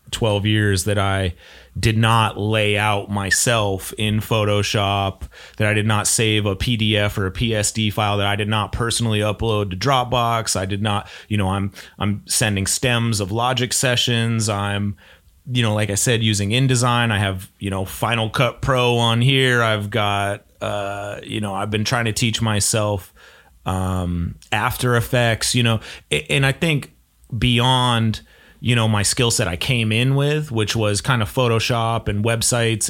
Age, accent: 30-49, American